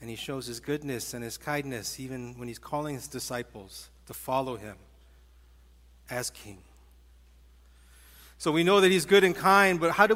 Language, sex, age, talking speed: English, male, 40-59, 175 wpm